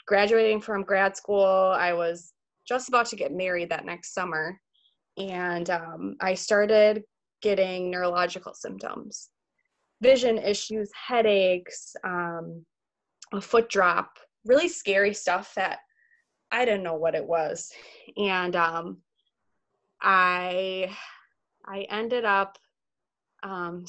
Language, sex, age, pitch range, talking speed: English, female, 20-39, 175-210 Hz, 115 wpm